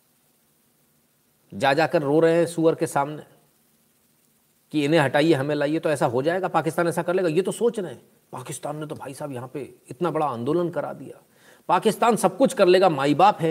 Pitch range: 140-175 Hz